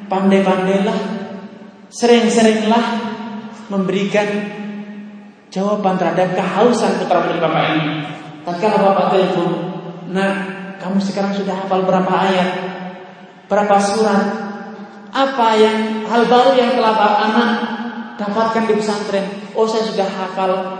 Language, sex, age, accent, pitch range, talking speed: Indonesian, male, 30-49, native, 185-215 Hz, 105 wpm